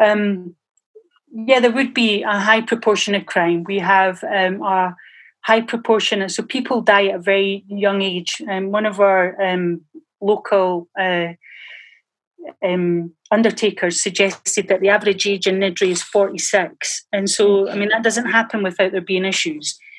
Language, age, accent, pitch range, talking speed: English, 30-49, British, 195-230 Hz, 170 wpm